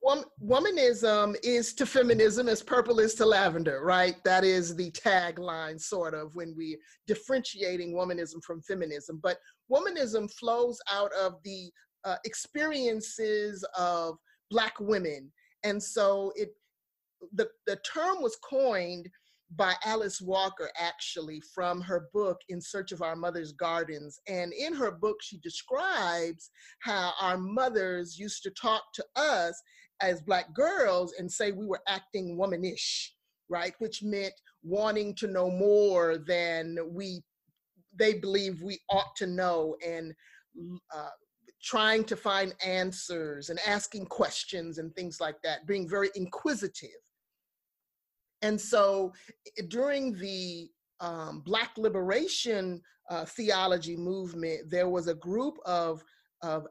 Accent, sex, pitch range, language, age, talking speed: American, male, 175-220 Hz, English, 30-49, 130 wpm